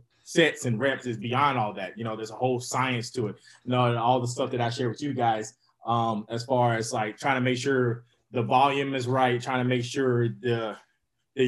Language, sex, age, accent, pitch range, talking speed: English, male, 20-39, American, 115-130 Hz, 235 wpm